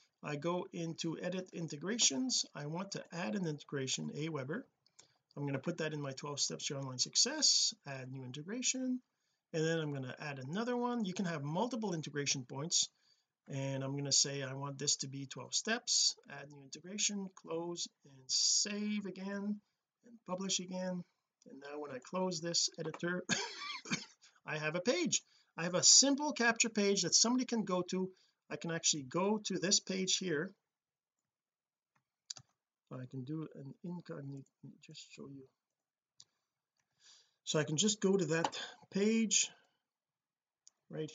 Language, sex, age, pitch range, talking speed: English, male, 40-59, 145-200 Hz, 165 wpm